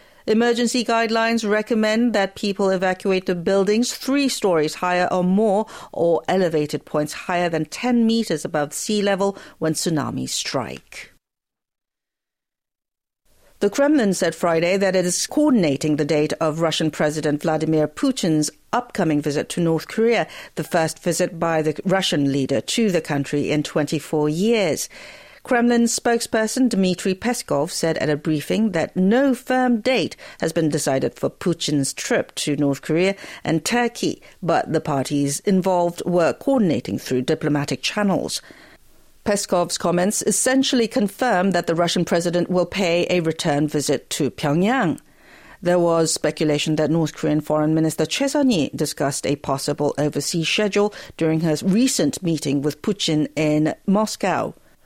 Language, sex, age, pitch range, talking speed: English, female, 50-69, 155-215 Hz, 140 wpm